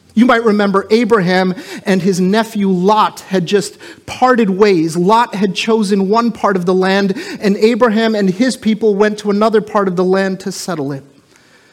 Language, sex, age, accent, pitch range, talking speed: English, male, 30-49, American, 195-235 Hz, 180 wpm